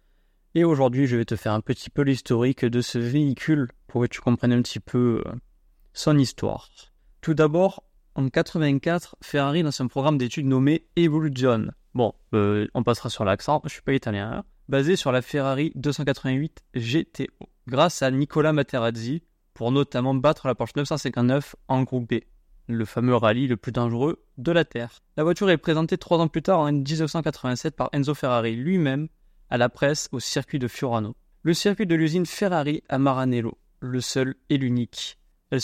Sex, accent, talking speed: male, French, 180 wpm